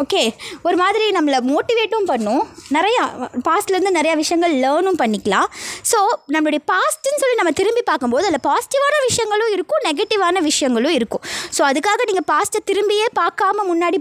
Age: 20-39